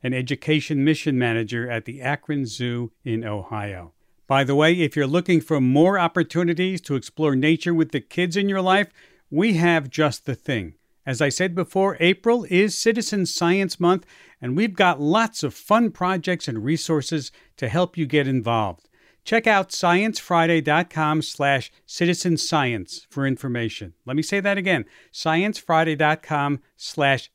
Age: 50-69